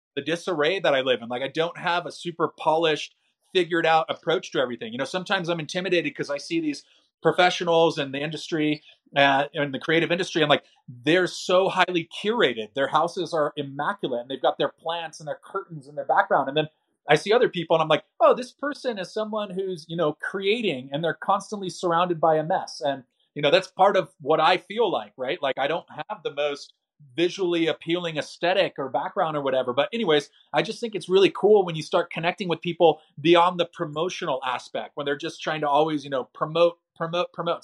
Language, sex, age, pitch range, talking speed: English, male, 30-49, 150-185 Hz, 215 wpm